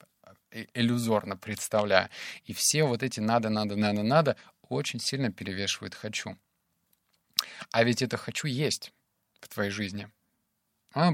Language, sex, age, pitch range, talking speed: Russian, male, 30-49, 105-140 Hz, 110 wpm